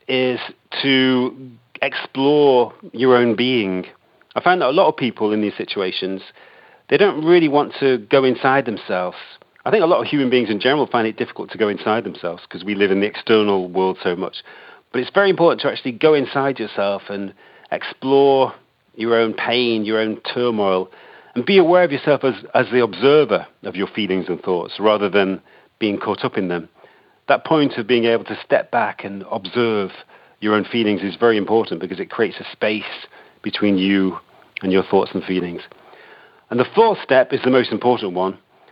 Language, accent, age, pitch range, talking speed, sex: English, British, 40-59, 100-130 Hz, 190 wpm, male